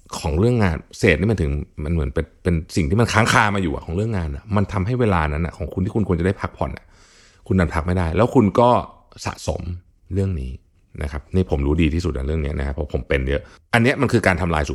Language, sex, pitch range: Thai, male, 80-100 Hz